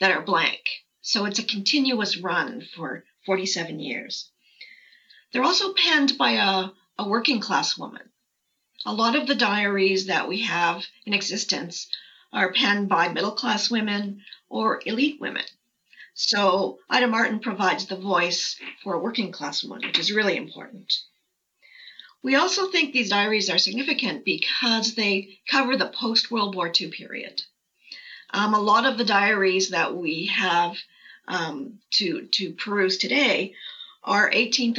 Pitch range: 190-255 Hz